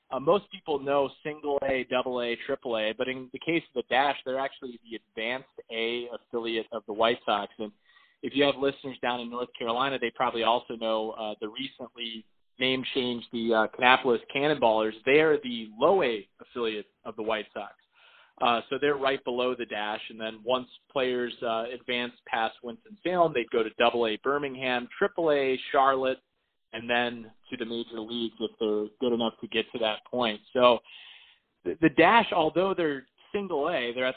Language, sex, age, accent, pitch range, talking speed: English, male, 30-49, American, 115-135 Hz, 175 wpm